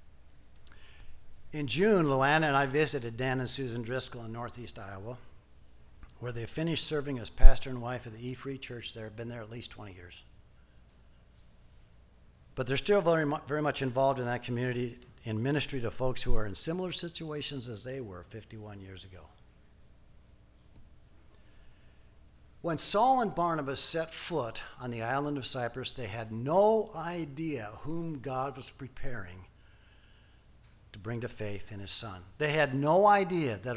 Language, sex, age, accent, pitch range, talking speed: English, male, 50-69, American, 100-145 Hz, 155 wpm